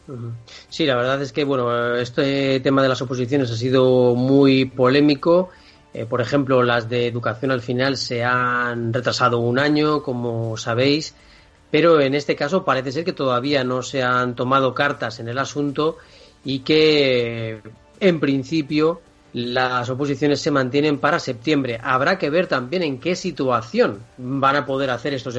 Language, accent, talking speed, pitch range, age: Spanish, Spanish, 160 wpm, 125-155 Hz, 30-49